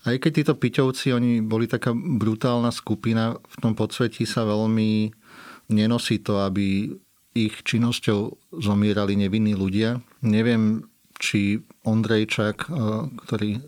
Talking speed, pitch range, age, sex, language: 115 wpm, 105-115 Hz, 40-59, male, Slovak